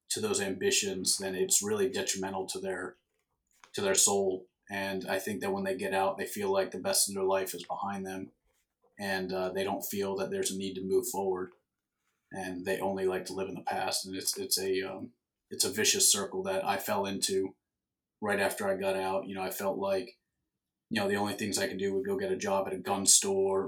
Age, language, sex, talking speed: 30-49, English, male, 235 wpm